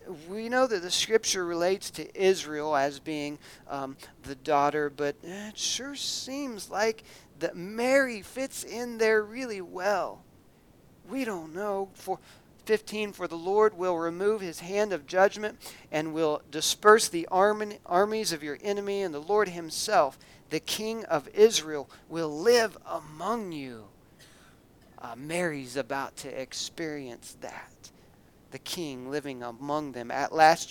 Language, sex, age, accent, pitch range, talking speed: English, male, 40-59, American, 145-195 Hz, 140 wpm